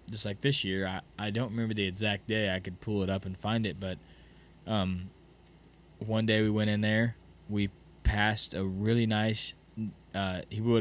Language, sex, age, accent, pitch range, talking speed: English, male, 20-39, American, 95-105 Hz, 195 wpm